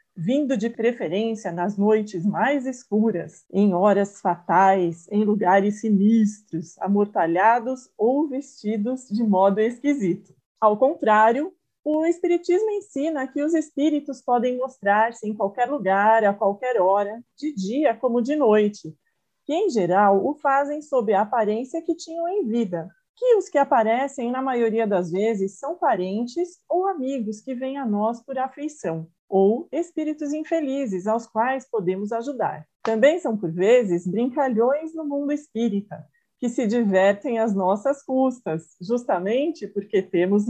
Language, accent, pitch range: Portuguese, Brazilian, 200-280 Hz